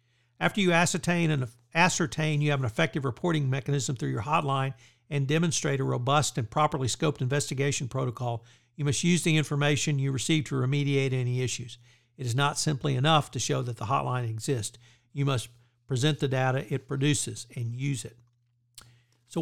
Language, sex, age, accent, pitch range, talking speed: English, male, 60-79, American, 120-150 Hz, 170 wpm